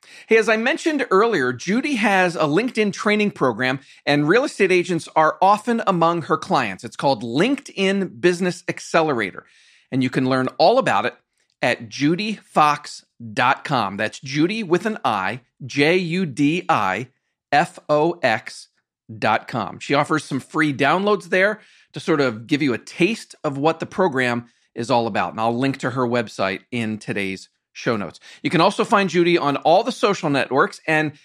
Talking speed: 155 wpm